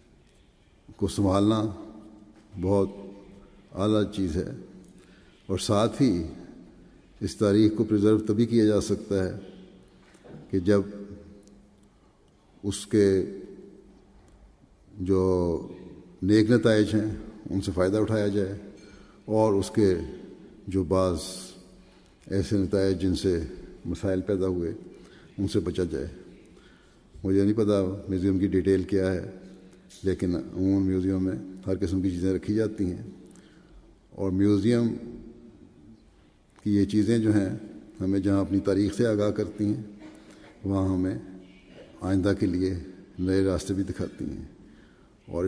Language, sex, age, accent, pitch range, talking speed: English, male, 50-69, Indian, 95-105 Hz, 115 wpm